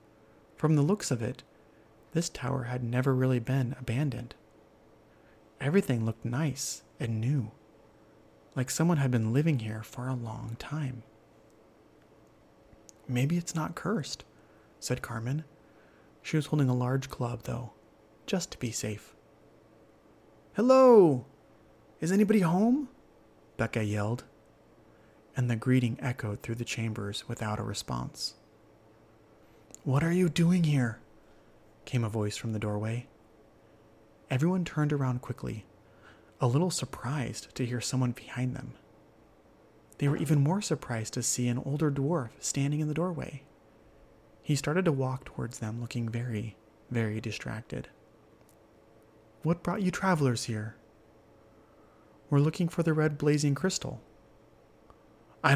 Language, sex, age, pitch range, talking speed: English, male, 30-49, 110-140 Hz, 130 wpm